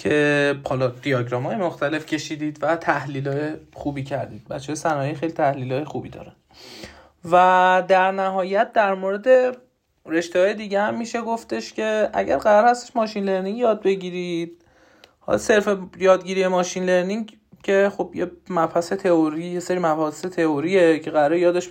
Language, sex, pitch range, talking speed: Persian, male, 140-190 Hz, 145 wpm